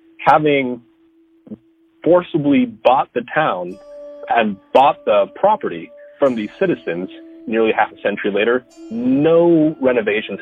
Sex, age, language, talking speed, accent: male, 30-49, English, 110 wpm, American